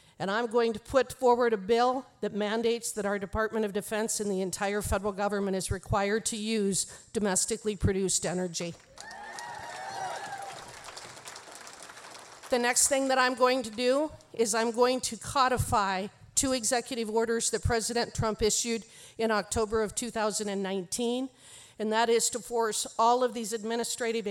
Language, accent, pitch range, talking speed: English, American, 210-245 Hz, 150 wpm